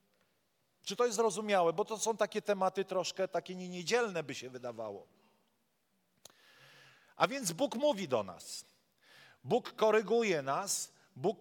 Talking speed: 130 wpm